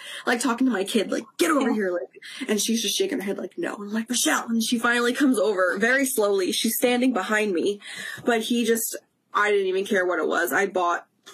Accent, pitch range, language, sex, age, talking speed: American, 195-240 Hz, English, female, 20-39, 235 wpm